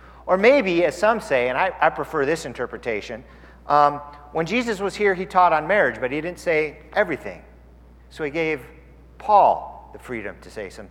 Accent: American